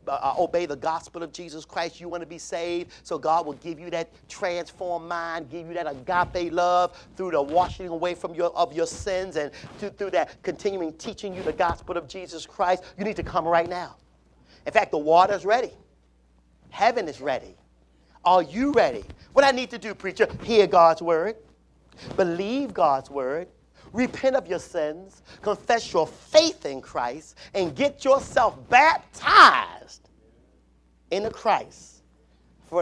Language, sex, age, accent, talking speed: English, male, 50-69, American, 165 wpm